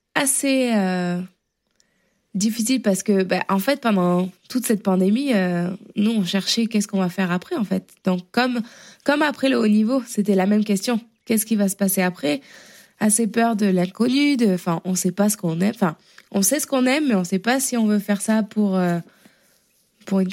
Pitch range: 185-225 Hz